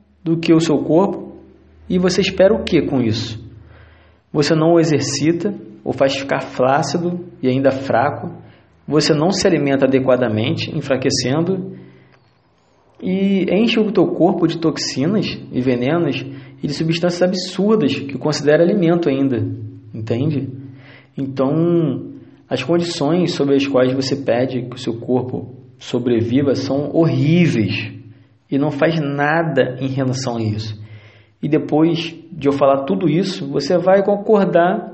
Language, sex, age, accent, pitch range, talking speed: Portuguese, male, 20-39, Brazilian, 130-170 Hz, 135 wpm